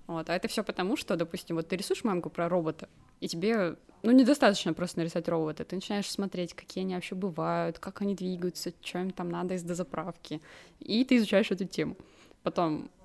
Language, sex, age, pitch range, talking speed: Russian, female, 20-39, 165-205 Hz, 195 wpm